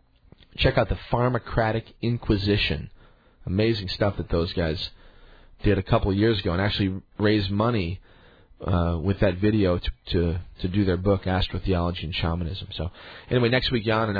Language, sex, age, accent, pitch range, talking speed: English, male, 40-59, American, 90-110 Hz, 170 wpm